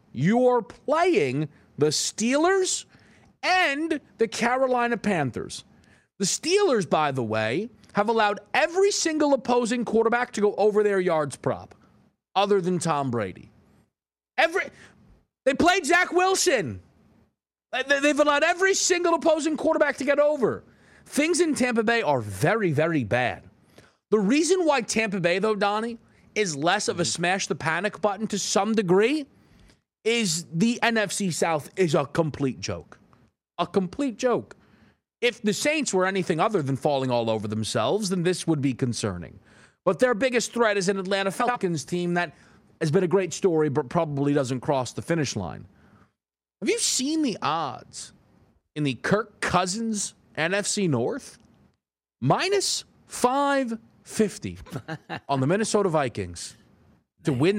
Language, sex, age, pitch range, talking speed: English, male, 30-49, 155-250 Hz, 145 wpm